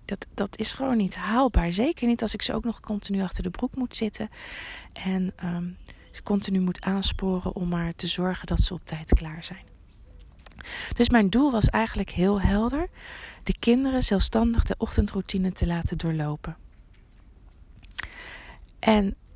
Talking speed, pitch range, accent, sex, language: 160 wpm, 175-230 Hz, Dutch, female, Dutch